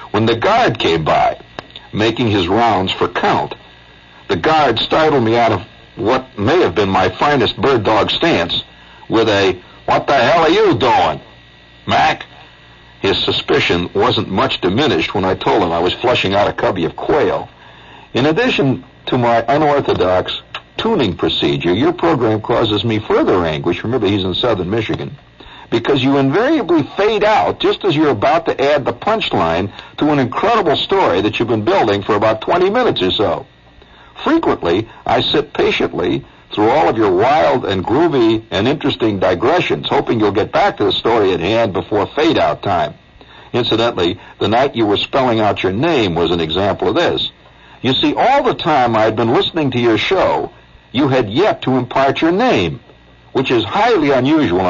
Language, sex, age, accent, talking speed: English, male, 60-79, American, 175 wpm